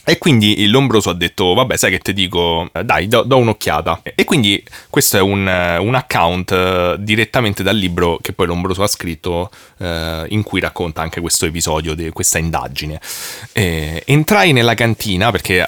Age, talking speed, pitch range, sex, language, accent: 30-49, 170 wpm, 95-130 Hz, male, Italian, native